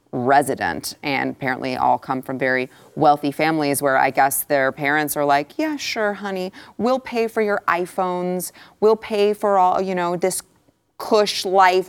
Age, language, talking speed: 30-49, English, 165 wpm